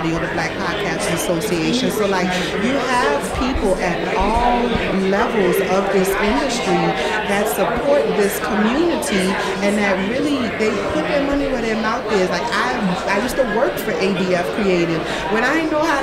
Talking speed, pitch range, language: 170 wpm, 200-275 Hz, English